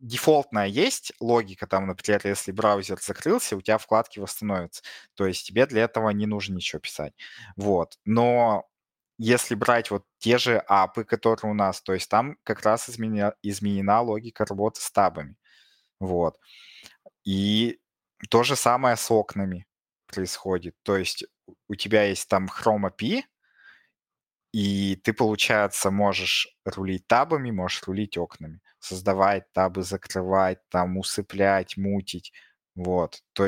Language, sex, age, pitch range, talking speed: Russian, male, 20-39, 95-110 Hz, 135 wpm